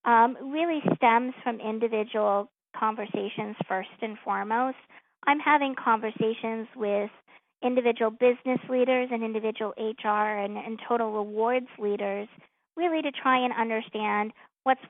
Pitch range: 210-240 Hz